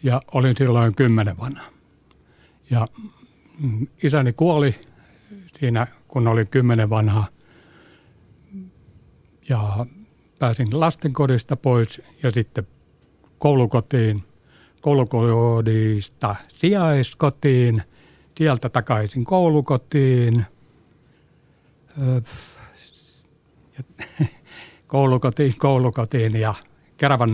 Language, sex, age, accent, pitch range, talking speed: Finnish, male, 60-79, native, 115-145 Hz, 65 wpm